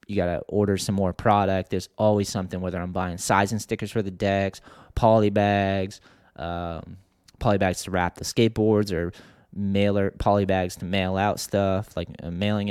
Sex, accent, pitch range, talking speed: male, American, 90-105 Hz, 175 wpm